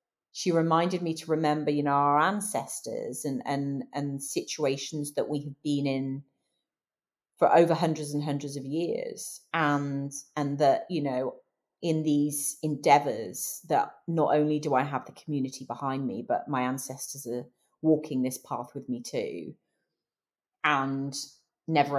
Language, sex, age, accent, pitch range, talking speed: English, female, 30-49, British, 135-160 Hz, 150 wpm